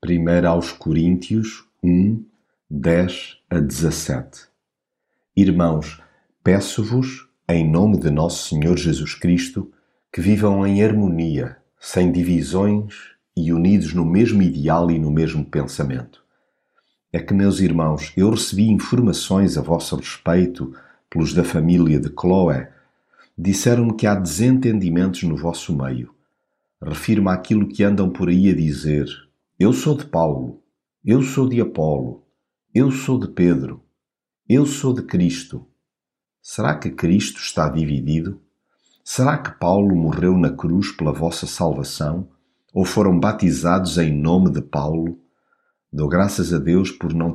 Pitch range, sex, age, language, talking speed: 80-100 Hz, male, 50-69, Portuguese, 130 wpm